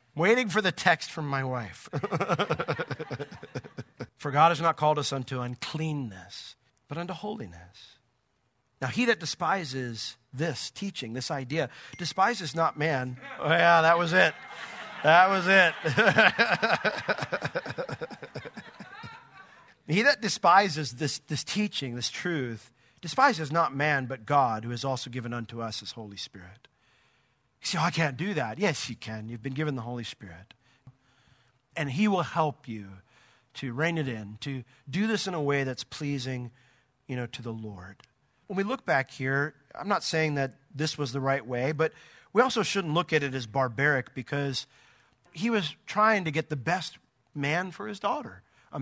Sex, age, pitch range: male, 40-59, 125-165 Hz